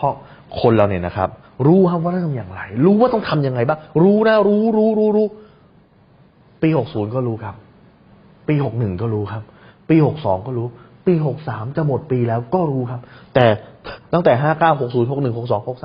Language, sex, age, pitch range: Thai, male, 20-39, 110-150 Hz